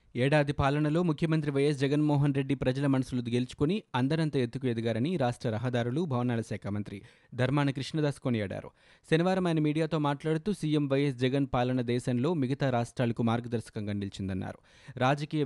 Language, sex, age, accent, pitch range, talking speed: Telugu, male, 20-39, native, 120-145 Hz, 130 wpm